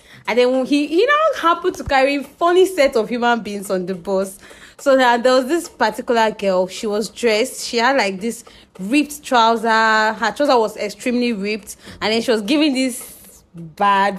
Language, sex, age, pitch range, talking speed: English, female, 20-39, 190-240 Hz, 185 wpm